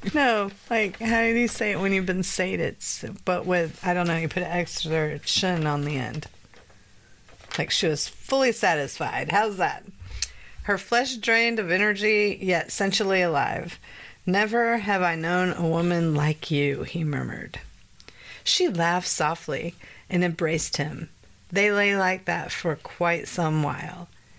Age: 40-59